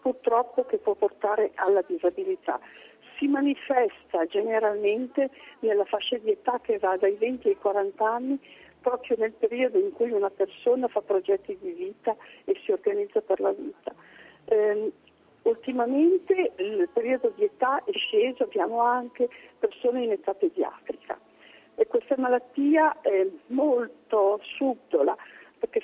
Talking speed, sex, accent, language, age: 135 wpm, female, native, Italian, 50-69